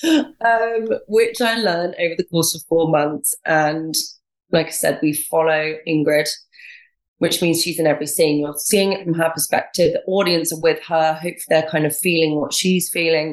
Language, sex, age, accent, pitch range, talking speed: English, female, 20-39, British, 150-195 Hz, 190 wpm